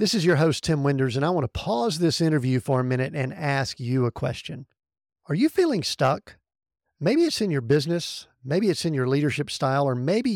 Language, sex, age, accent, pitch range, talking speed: English, male, 50-69, American, 130-190 Hz, 220 wpm